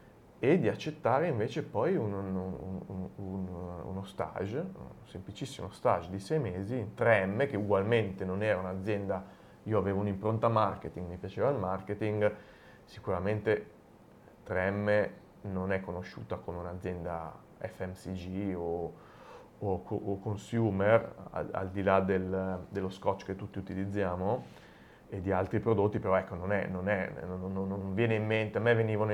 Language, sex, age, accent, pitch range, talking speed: Italian, male, 30-49, native, 95-110 Hz, 140 wpm